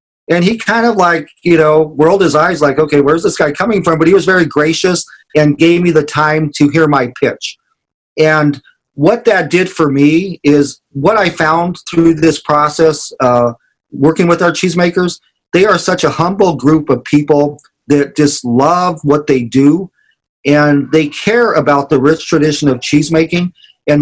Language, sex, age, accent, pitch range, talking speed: English, male, 40-59, American, 140-170 Hz, 180 wpm